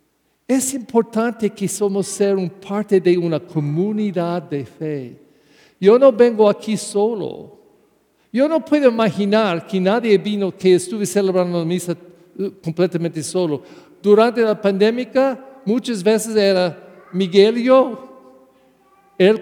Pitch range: 170-220 Hz